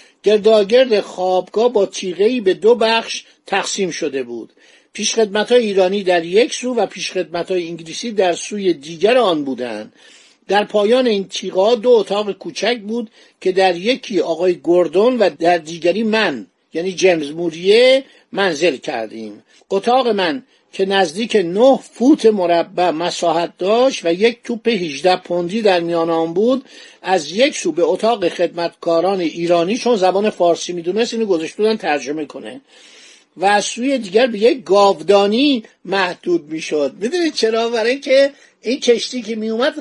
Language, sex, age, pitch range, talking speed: Persian, male, 50-69, 175-235 Hz, 145 wpm